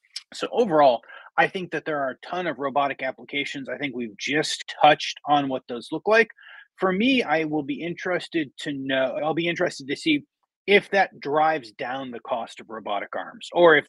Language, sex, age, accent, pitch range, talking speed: English, male, 30-49, American, 135-170 Hz, 200 wpm